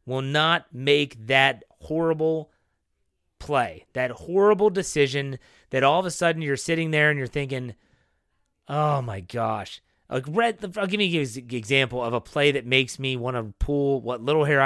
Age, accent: 30-49, American